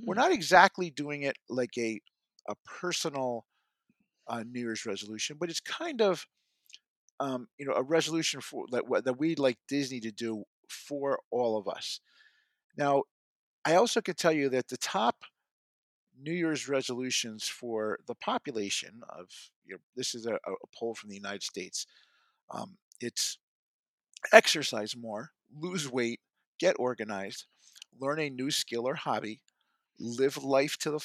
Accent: American